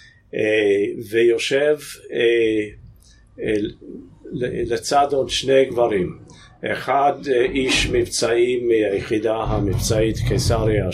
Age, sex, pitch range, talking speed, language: 50-69, male, 115-155 Hz, 60 wpm, Hebrew